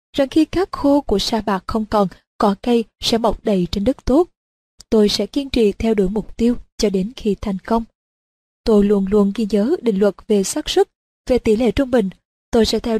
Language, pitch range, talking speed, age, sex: Vietnamese, 205-245 Hz, 220 wpm, 20-39, female